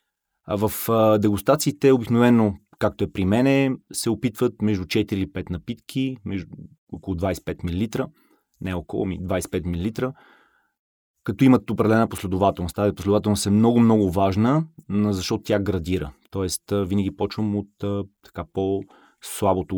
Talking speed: 125 wpm